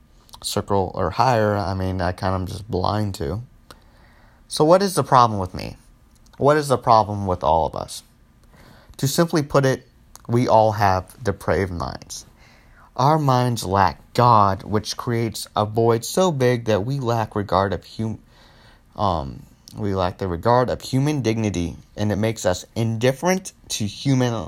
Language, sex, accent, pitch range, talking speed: English, male, American, 100-120 Hz, 165 wpm